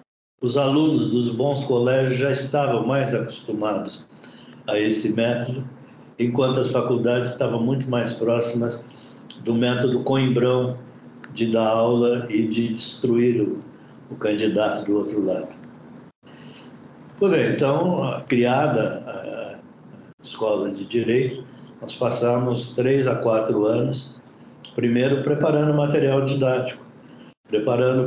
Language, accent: Portuguese, Brazilian